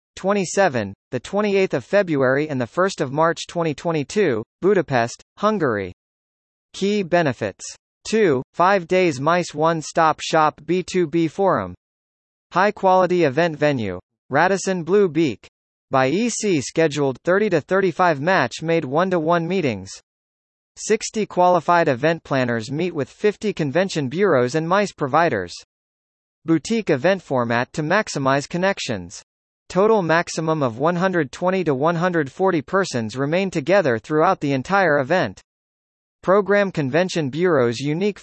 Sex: male